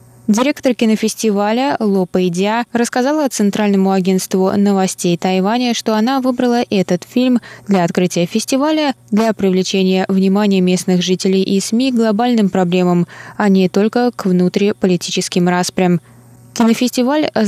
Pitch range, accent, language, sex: 185-230 Hz, native, Russian, female